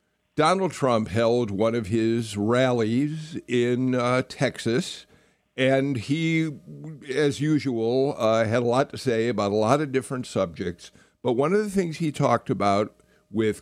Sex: male